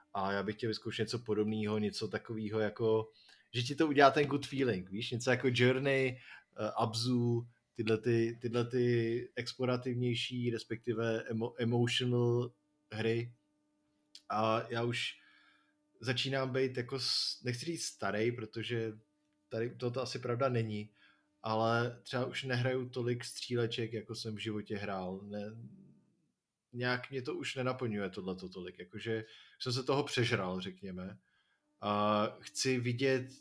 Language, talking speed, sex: Czech, 135 wpm, male